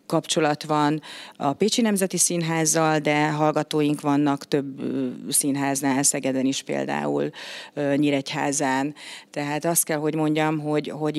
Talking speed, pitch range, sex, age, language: 120 wpm, 145-170 Hz, female, 40-59, Hungarian